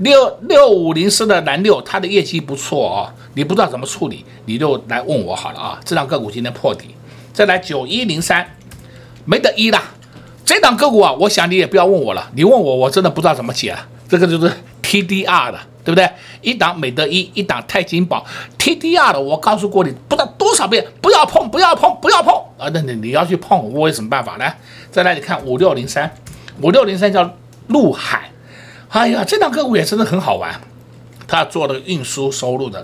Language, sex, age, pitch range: Chinese, male, 60-79, 135-205 Hz